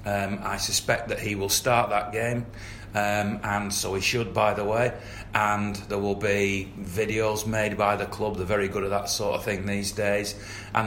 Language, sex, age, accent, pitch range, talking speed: English, male, 40-59, British, 100-110 Hz, 205 wpm